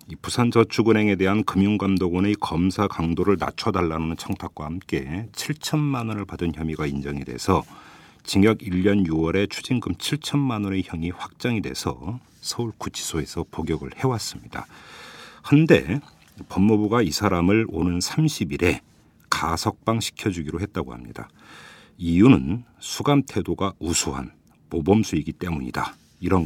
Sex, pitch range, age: male, 85-115 Hz, 50-69